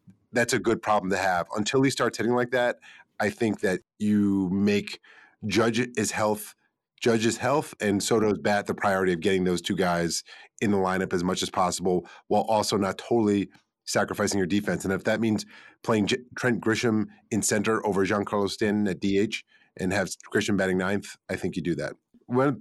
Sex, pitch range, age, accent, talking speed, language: male, 100-120 Hz, 30-49, American, 195 wpm, English